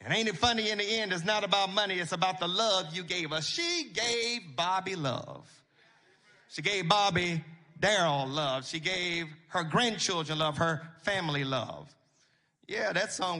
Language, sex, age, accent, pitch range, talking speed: English, male, 40-59, American, 155-205 Hz, 170 wpm